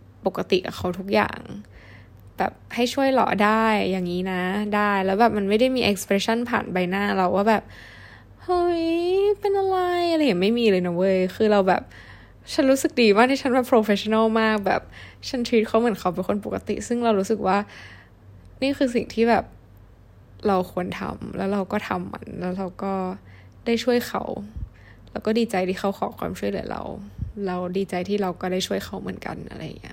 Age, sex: 10-29, female